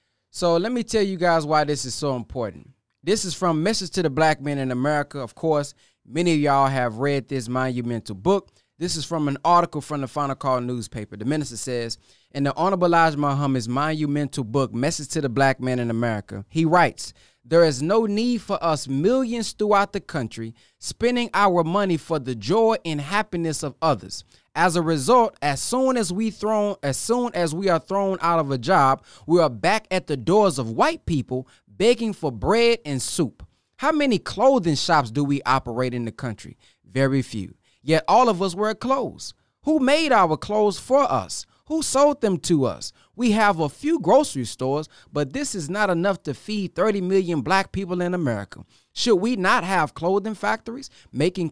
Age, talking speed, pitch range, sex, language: 20-39, 195 wpm, 140-215 Hz, male, English